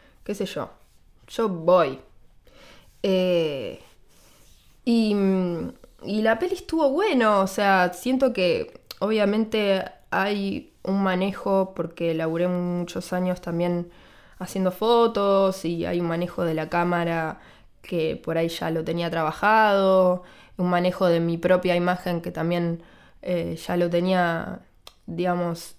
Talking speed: 125 wpm